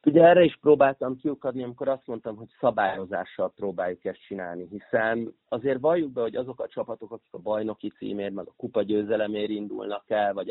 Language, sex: Hungarian, male